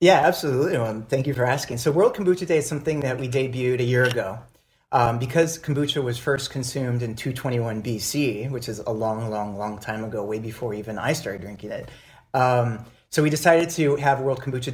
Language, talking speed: English, 205 wpm